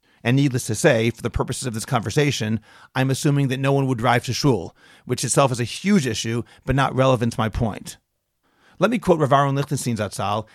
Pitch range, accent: 125-160 Hz, American